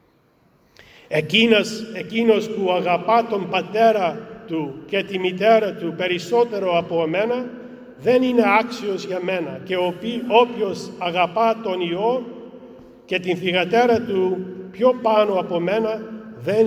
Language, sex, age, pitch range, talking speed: English, male, 50-69, 175-225 Hz, 120 wpm